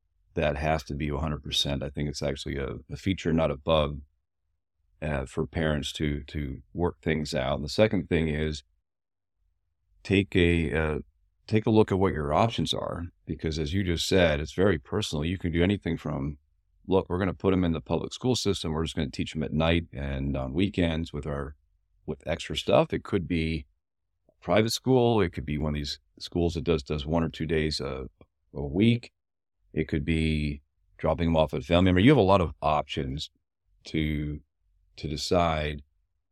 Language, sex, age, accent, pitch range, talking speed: English, male, 40-59, American, 75-90 Hz, 200 wpm